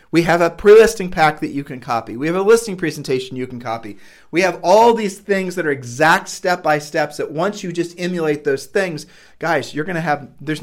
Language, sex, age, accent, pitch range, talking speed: English, male, 40-59, American, 140-170 Hz, 220 wpm